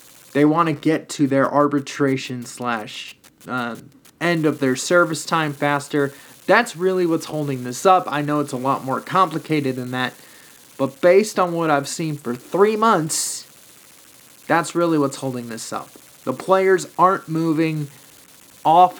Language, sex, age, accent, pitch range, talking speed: English, male, 20-39, American, 150-220 Hz, 160 wpm